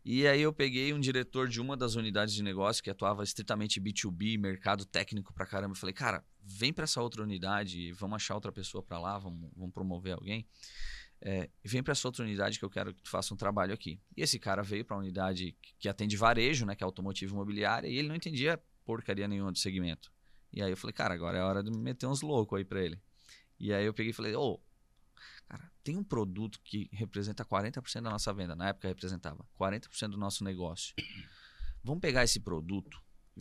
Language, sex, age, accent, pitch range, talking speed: Portuguese, male, 20-39, Brazilian, 95-125 Hz, 215 wpm